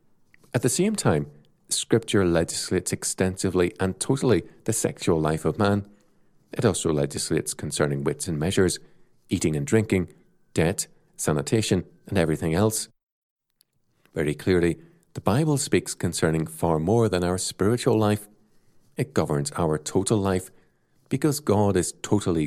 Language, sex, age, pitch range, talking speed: English, male, 40-59, 80-110 Hz, 135 wpm